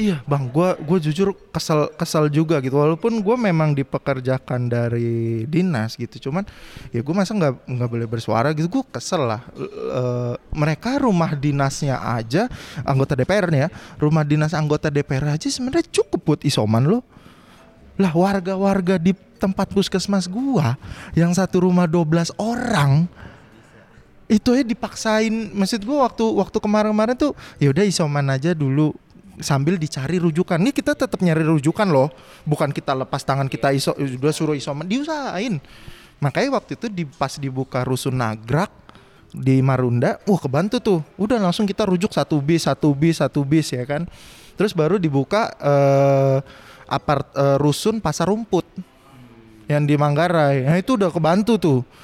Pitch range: 135-190 Hz